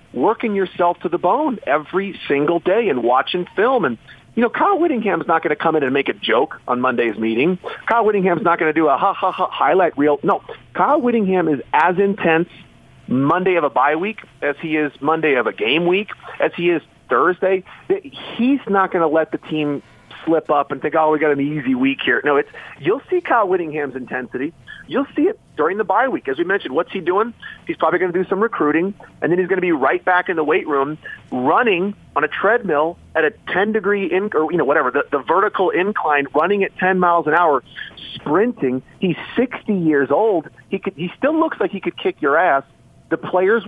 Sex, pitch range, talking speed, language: male, 155-210 Hz, 220 wpm, English